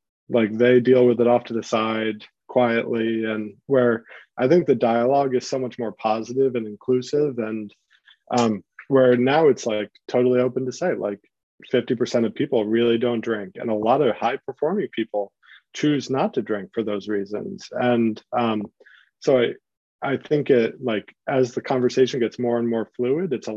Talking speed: 180 wpm